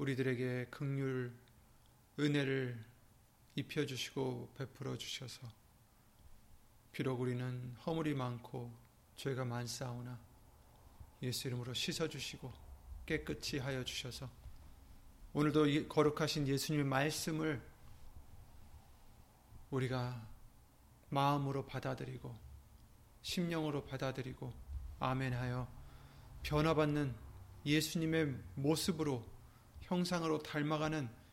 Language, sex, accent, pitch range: Korean, male, native, 115-145 Hz